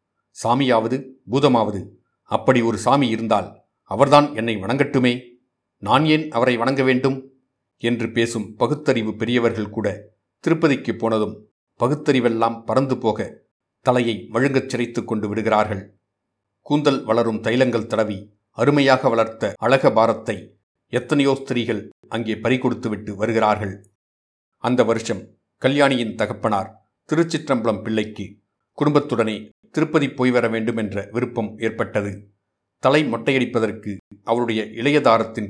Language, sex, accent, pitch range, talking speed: Tamil, male, native, 105-130 Hz, 100 wpm